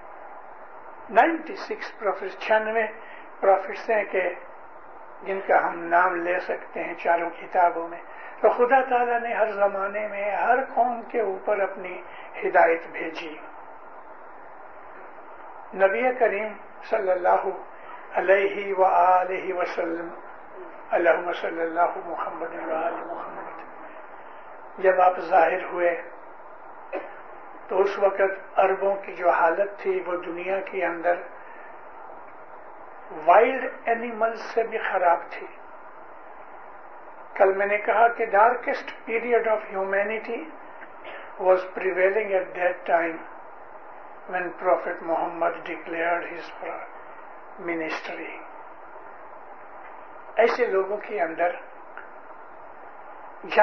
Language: English